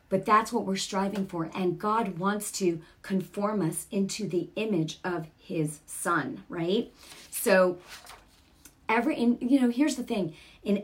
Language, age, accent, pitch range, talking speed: English, 40-59, American, 180-225 Hz, 155 wpm